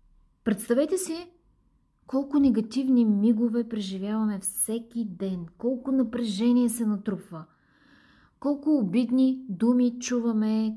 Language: Bulgarian